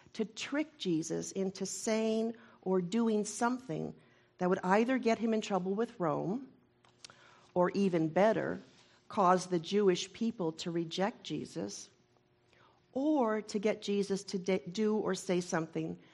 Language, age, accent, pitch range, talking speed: English, 50-69, American, 180-220 Hz, 135 wpm